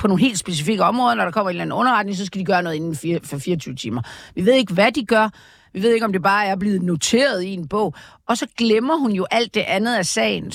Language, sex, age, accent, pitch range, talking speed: Danish, female, 50-69, native, 175-235 Hz, 280 wpm